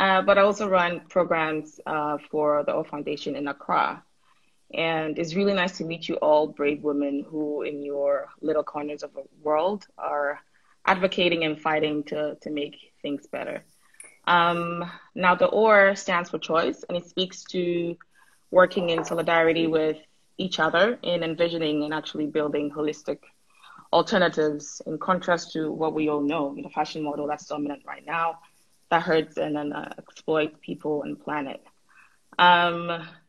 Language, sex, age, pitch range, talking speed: English, female, 20-39, 150-175 Hz, 160 wpm